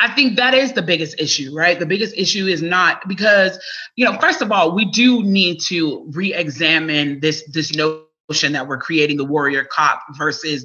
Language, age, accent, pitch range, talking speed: English, 30-49, American, 150-180 Hz, 190 wpm